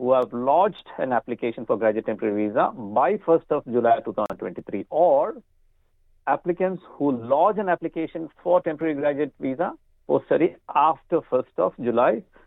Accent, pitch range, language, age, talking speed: native, 130-180 Hz, Malayalam, 50-69, 145 wpm